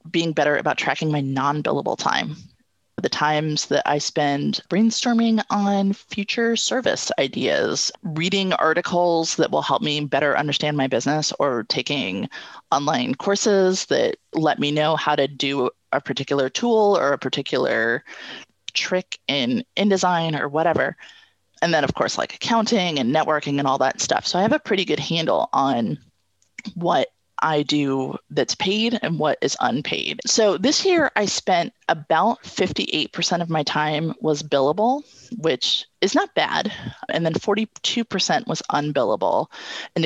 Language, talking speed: English, 150 wpm